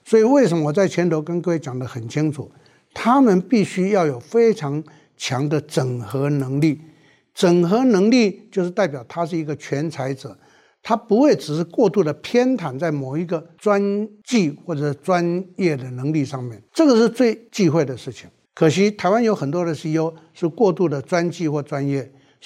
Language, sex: Chinese, male